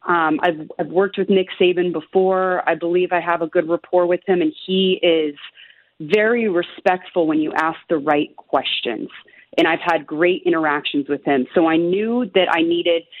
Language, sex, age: English, female, 30-49